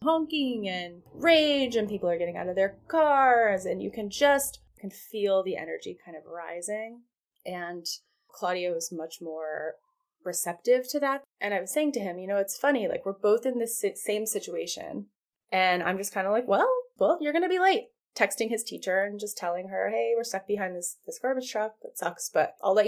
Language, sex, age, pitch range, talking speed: English, female, 20-39, 180-255 Hz, 205 wpm